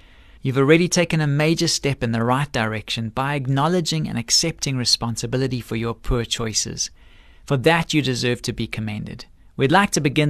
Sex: male